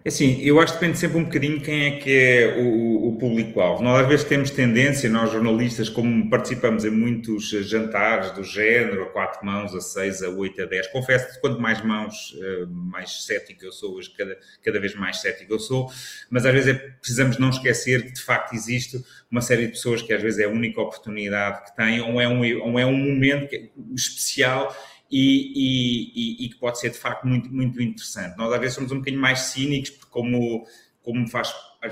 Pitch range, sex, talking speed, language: 115-130 Hz, male, 210 wpm, Portuguese